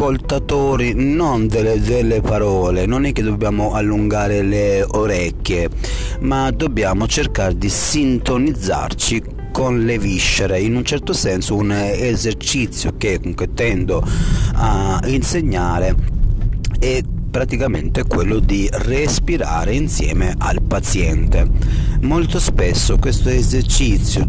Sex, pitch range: male, 95-120 Hz